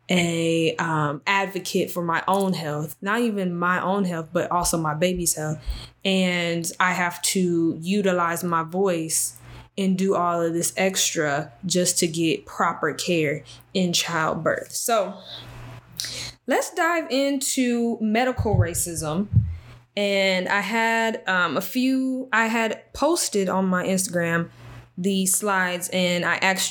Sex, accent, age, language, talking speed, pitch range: female, American, 20-39, English, 135 wpm, 170-205 Hz